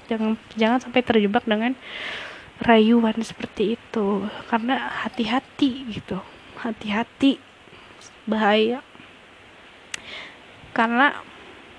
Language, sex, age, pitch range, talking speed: Indonesian, female, 20-39, 220-245 Hz, 70 wpm